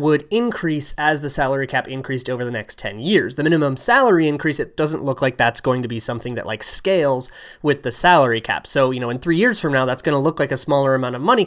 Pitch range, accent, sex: 125-160 Hz, American, male